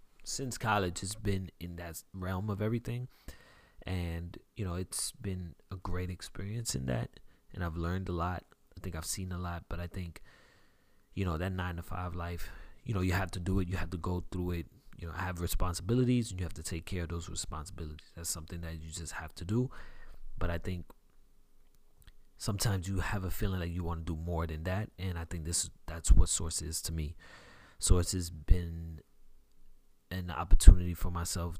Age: 30-49